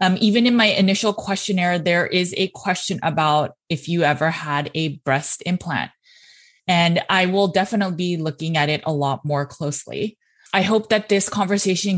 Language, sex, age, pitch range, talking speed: English, female, 20-39, 160-195 Hz, 175 wpm